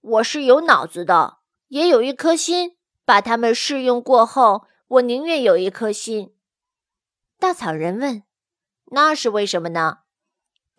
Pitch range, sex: 205-290 Hz, female